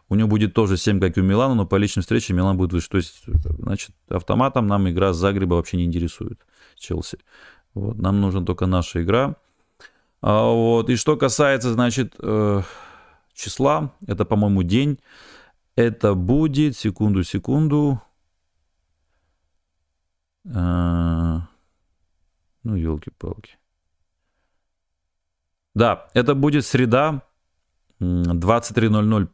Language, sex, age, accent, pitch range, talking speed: Russian, male, 30-49, native, 85-115 Hz, 110 wpm